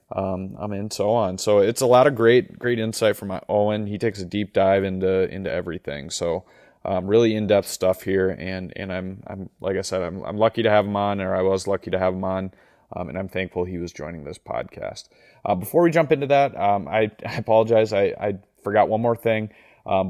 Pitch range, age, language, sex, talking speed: 95-110 Hz, 30-49, English, male, 240 wpm